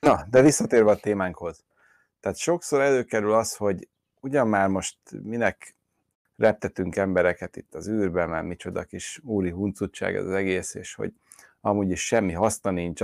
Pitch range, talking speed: 90-105 Hz, 155 wpm